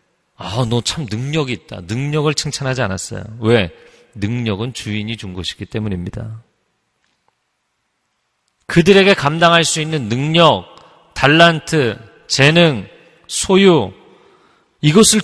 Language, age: Korean, 40-59